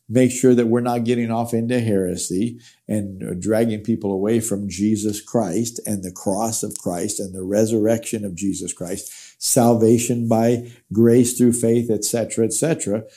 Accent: American